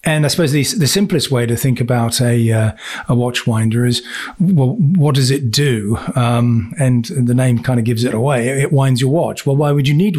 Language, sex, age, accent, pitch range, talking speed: English, male, 30-49, British, 115-130 Hz, 235 wpm